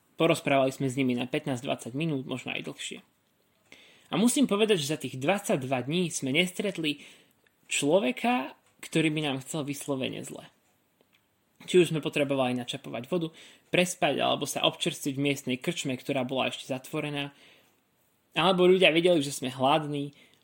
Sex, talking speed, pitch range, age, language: male, 145 wpm, 140-180 Hz, 20-39, Slovak